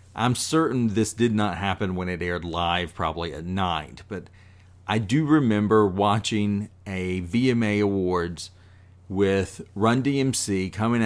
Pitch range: 95-120 Hz